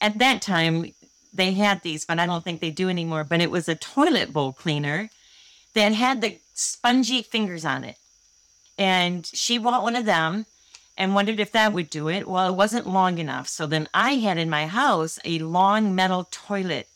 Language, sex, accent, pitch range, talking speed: English, female, American, 165-210 Hz, 200 wpm